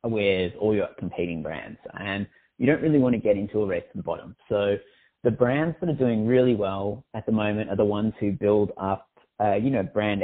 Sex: male